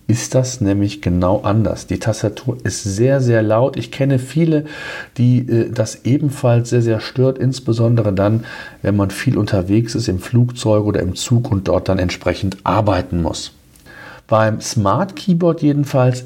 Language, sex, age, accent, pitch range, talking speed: German, male, 40-59, German, 105-130 Hz, 160 wpm